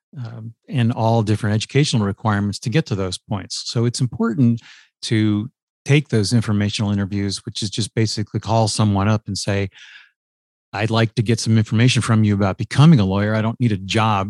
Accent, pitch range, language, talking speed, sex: American, 105-120 Hz, English, 190 wpm, male